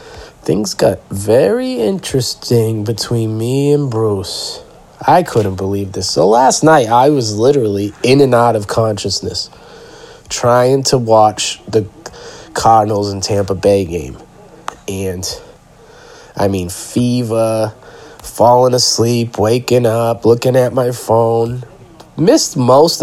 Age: 30-49